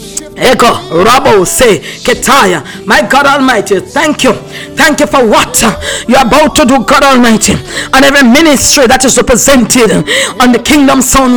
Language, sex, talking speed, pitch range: English, female, 135 wpm, 265-345 Hz